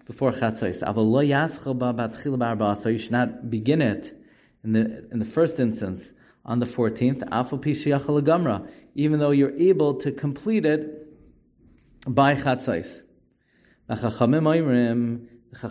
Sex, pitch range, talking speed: male, 120-140 Hz, 105 wpm